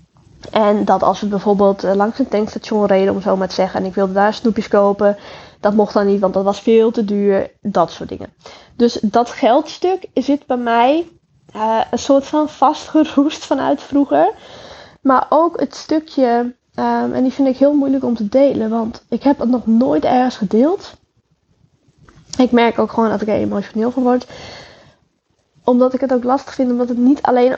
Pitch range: 215-270 Hz